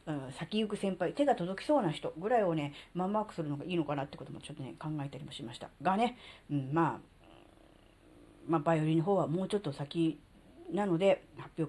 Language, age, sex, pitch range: Japanese, 40-59, female, 155-220 Hz